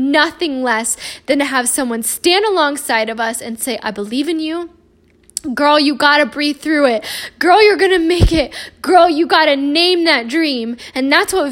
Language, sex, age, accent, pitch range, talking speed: English, female, 10-29, American, 235-295 Hz, 205 wpm